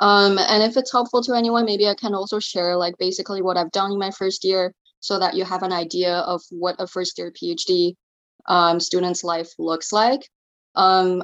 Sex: female